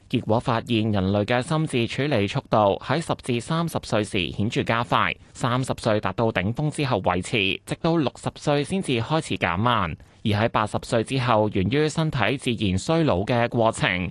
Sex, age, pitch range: male, 20-39, 100-140 Hz